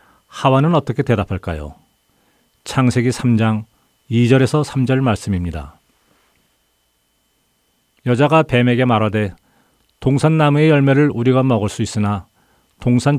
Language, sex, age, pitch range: Korean, male, 40-59, 90-135 Hz